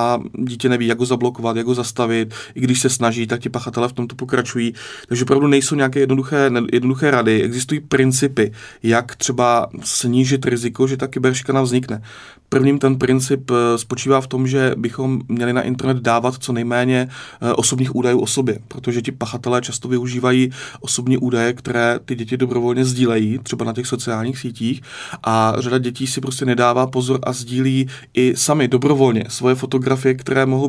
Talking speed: 170 wpm